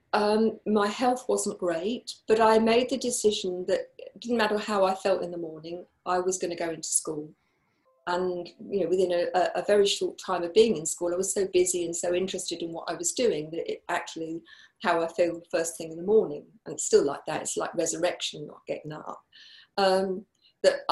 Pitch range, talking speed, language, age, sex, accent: 175-215 Hz, 215 wpm, English, 40-59, female, British